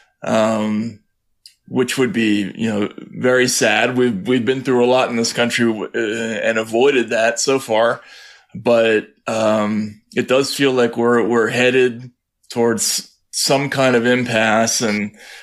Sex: male